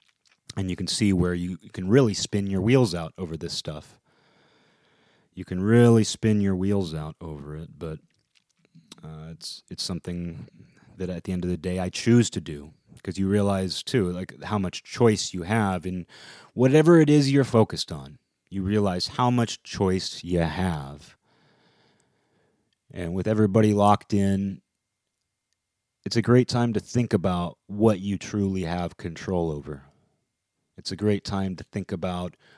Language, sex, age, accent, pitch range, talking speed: English, male, 30-49, American, 85-105 Hz, 165 wpm